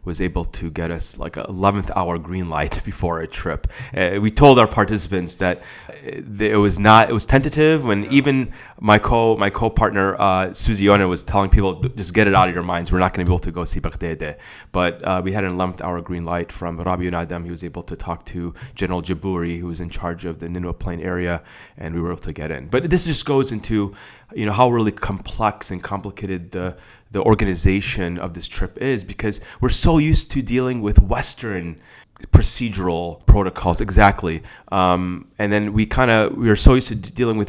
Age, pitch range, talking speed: 30-49, 85-110 Hz, 210 wpm